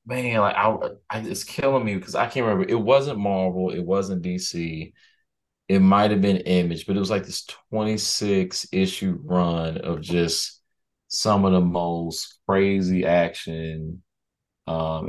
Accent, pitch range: American, 85-95 Hz